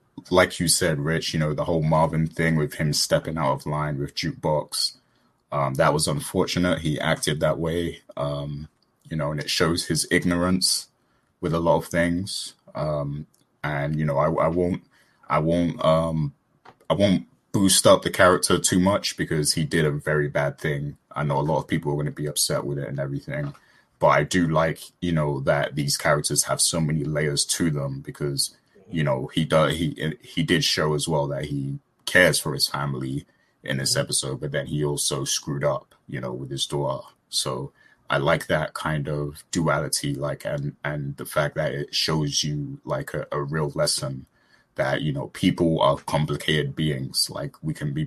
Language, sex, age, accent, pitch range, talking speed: English, male, 20-39, British, 70-80 Hz, 195 wpm